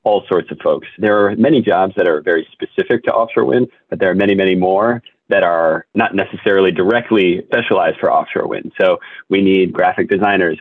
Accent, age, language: American, 30-49, English